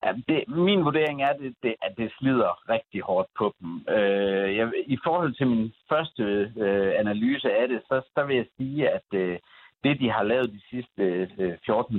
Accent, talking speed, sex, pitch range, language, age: native, 155 wpm, male, 95-125 Hz, Danish, 60-79